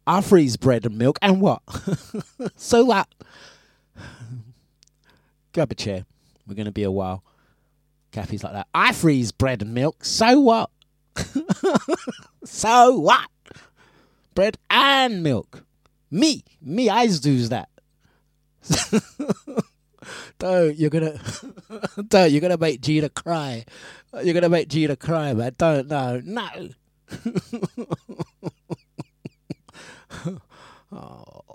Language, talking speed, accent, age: English, 115 wpm, British, 30-49